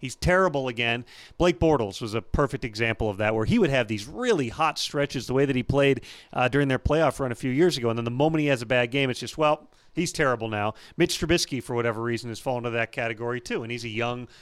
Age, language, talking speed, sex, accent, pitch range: 40-59, English, 260 wpm, male, American, 115-140 Hz